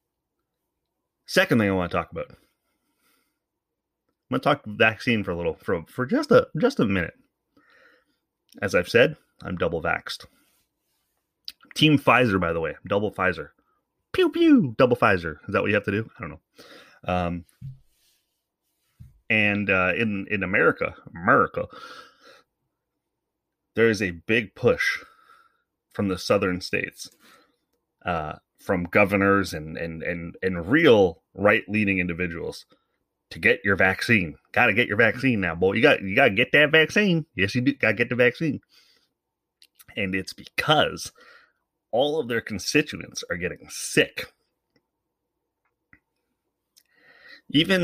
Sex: male